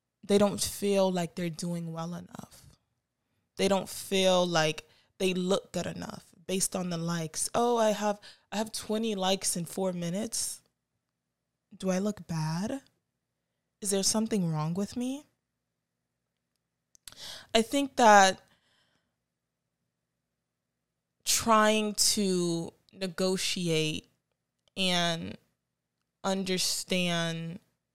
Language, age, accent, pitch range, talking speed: English, 20-39, American, 150-195 Hz, 105 wpm